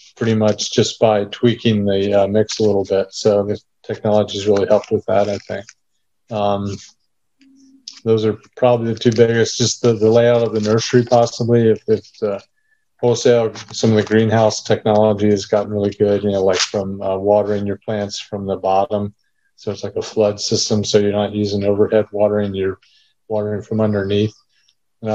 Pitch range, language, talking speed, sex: 100-110 Hz, English, 185 wpm, male